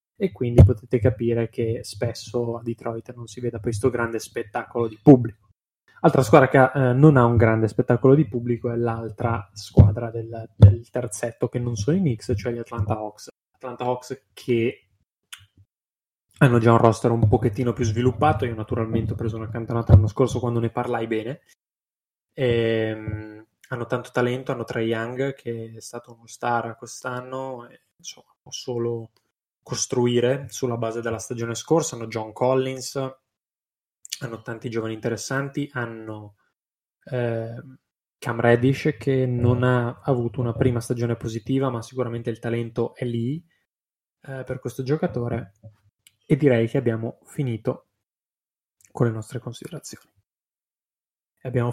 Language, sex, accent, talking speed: Italian, male, native, 150 wpm